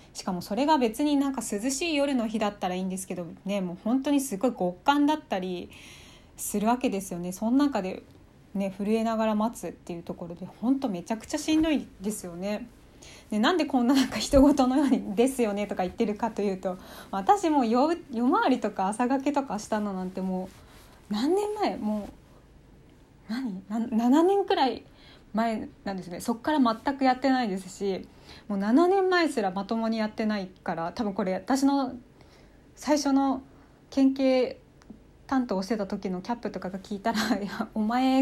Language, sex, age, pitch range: Japanese, female, 20-39, 195-260 Hz